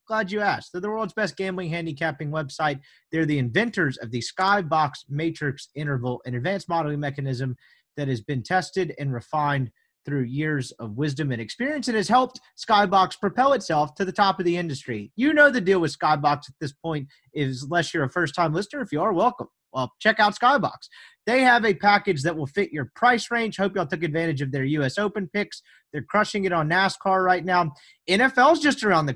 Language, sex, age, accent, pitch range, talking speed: English, male, 30-49, American, 145-205 Hz, 205 wpm